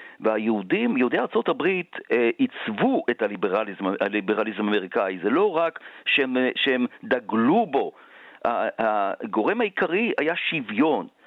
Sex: male